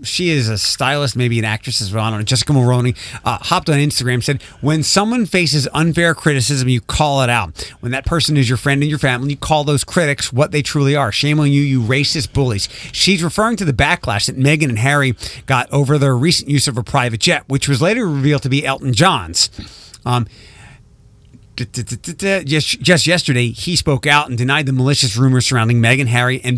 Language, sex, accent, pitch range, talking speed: English, male, American, 120-150 Hz, 210 wpm